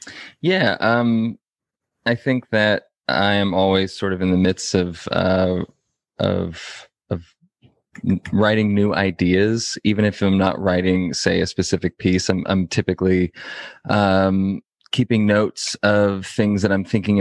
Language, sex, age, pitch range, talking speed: English, male, 20-39, 95-105 Hz, 140 wpm